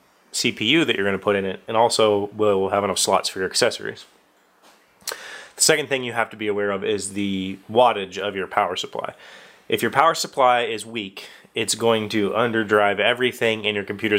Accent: American